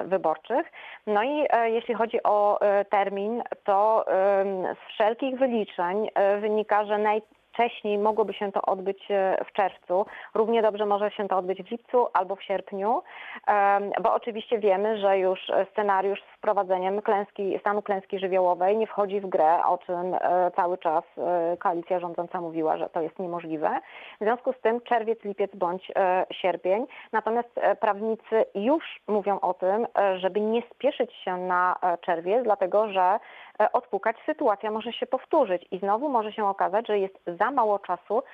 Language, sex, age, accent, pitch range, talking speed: Polish, female, 30-49, native, 190-220 Hz, 145 wpm